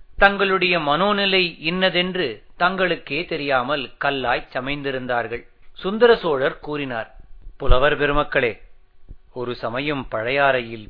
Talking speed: 75 wpm